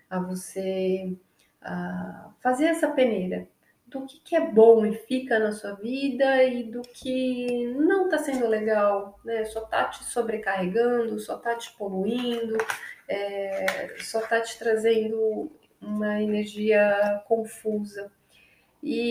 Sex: female